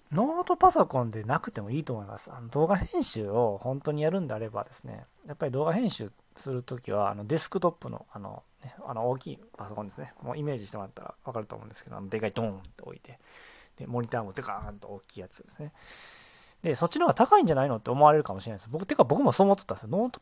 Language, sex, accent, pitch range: Japanese, male, native, 110-165 Hz